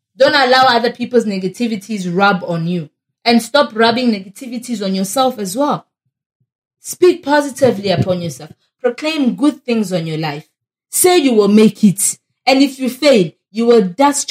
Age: 20-39